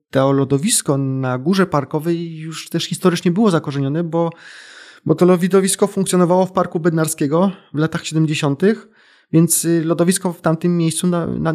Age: 20-39